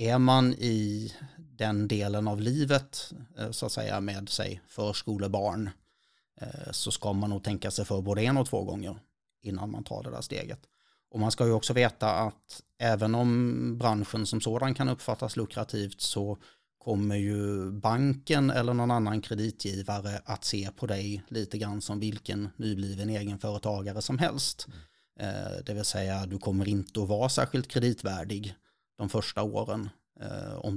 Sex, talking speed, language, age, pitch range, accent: male, 160 wpm, Swedish, 30-49, 105-125 Hz, native